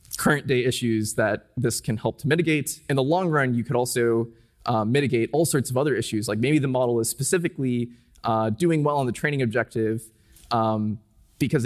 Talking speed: 190 wpm